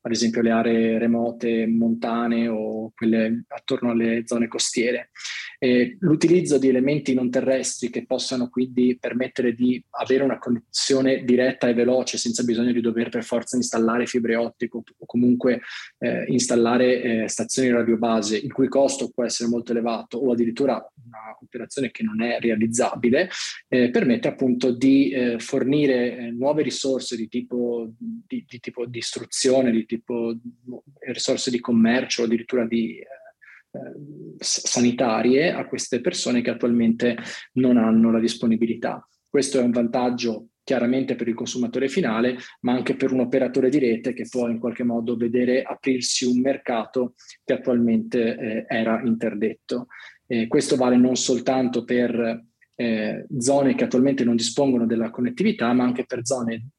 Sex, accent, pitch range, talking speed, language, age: male, native, 115-130 Hz, 150 wpm, Italian, 20-39